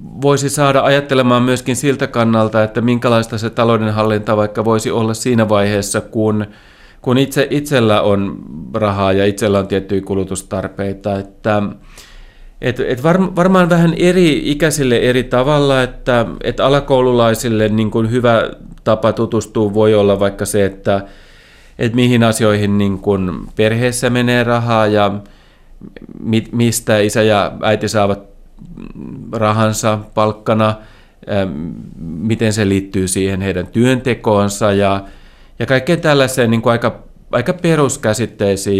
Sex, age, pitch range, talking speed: male, 30-49, 100-125 Hz, 125 wpm